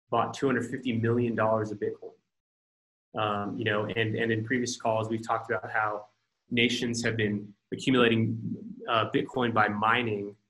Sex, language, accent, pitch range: male, English, American, 110-135 Hz